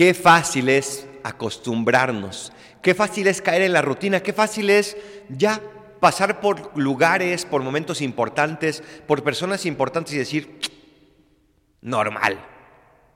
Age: 50-69